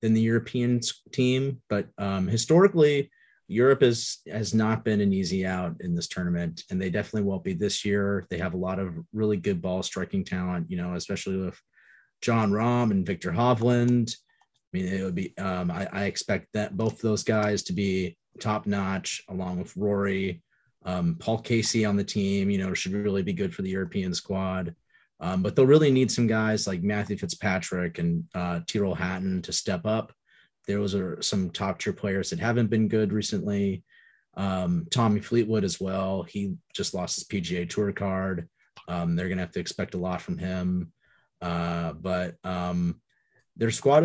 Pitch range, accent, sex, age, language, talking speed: 90-110 Hz, American, male, 30-49, English, 185 wpm